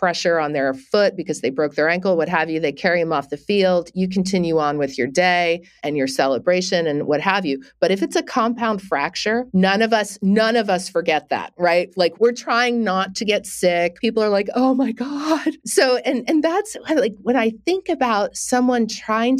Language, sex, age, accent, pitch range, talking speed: English, female, 50-69, American, 165-220 Hz, 215 wpm